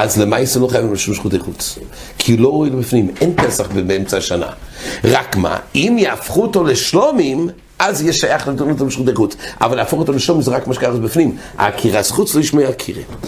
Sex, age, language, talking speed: male, 60-79, English, 215 wpm